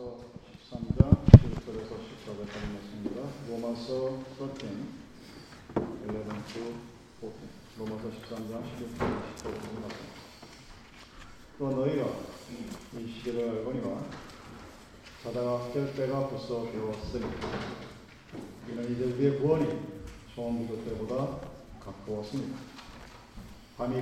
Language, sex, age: Korean, male, 40-59